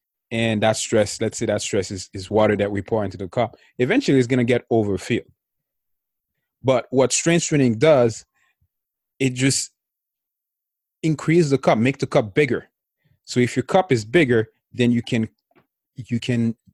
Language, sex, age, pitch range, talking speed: English, male, 30-49, 95-120 Hz, 170 wpm